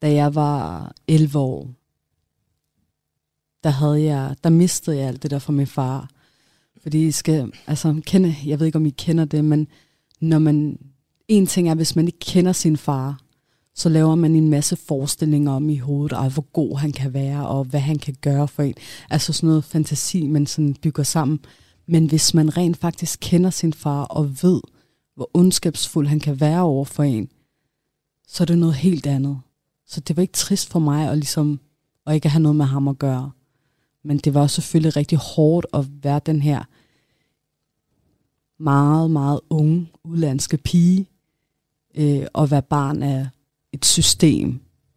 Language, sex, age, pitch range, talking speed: Danish, female, 30-49, 140-160 Hz, 180 wpm